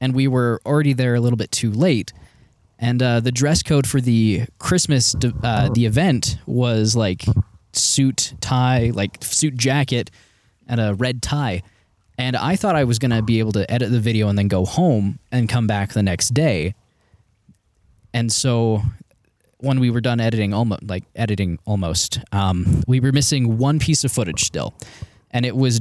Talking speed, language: 180 wpm, English